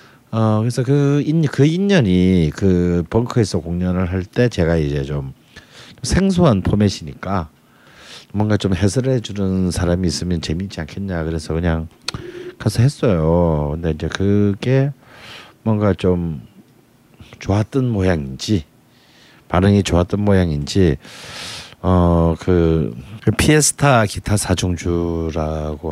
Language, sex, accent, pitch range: Korean, male, native, 85-120 Hz